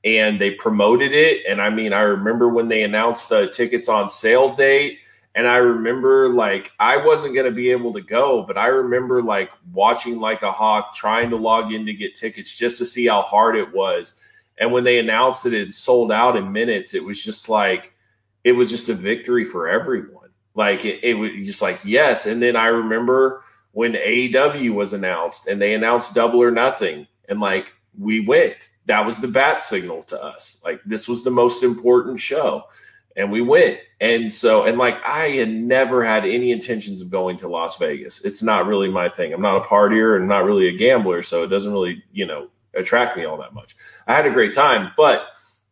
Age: 20-39